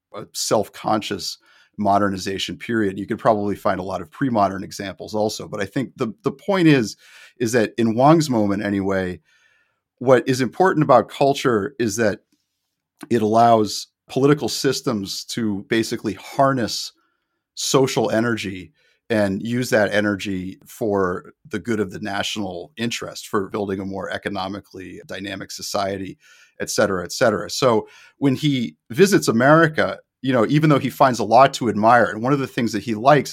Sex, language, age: male, English, 40-59